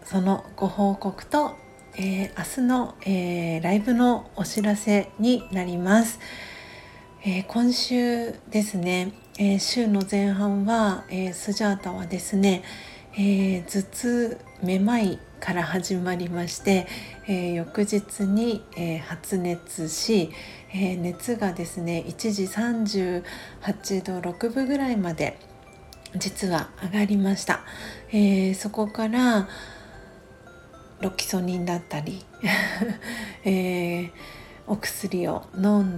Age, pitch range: 40-59, 185-210 Hz